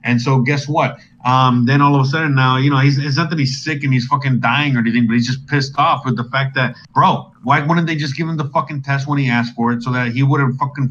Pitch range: 125-140 Hz